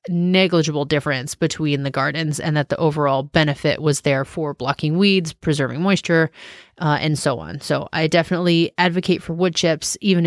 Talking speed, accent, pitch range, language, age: 170 wpm, American, 150-180 Hz, English, 30-49